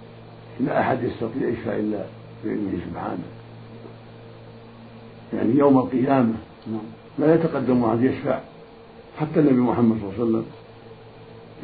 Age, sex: 60-79, male